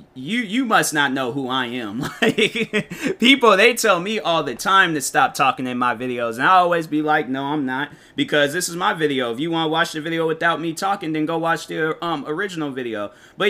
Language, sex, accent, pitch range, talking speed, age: English, male, American, 130-165 Hz, 235 wpm, 20-39